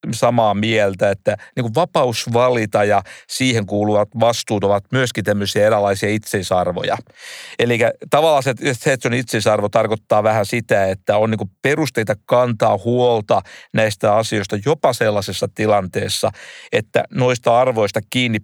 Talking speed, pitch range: 120 wpm, 105-130 Hz